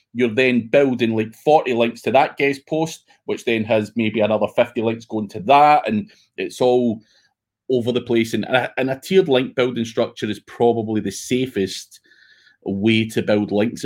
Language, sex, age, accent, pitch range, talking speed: English, male, 30-49, British, 110-125 Hz, 180 wpm